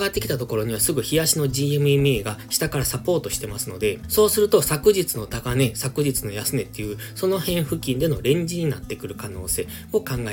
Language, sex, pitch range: Japanese, male, 115-160 Hz